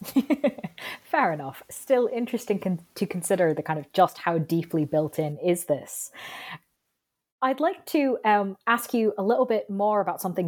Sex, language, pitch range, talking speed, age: female, English, 175-235 Hz, 160 wpm, 20-39